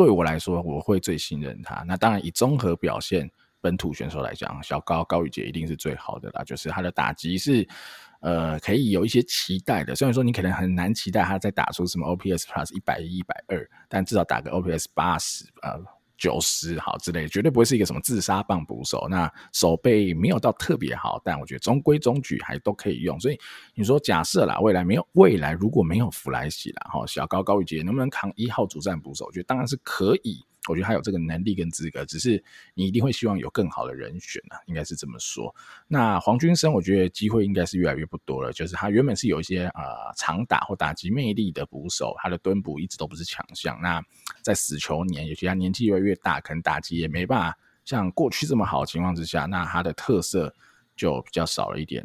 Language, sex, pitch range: Chinese, male, 85-100 Hz